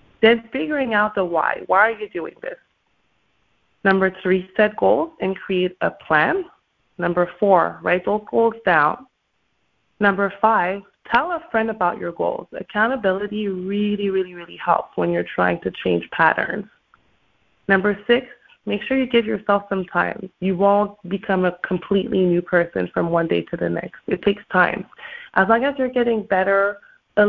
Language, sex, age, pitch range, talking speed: English, female, 20-39, 180-215 Hz, 165 wpm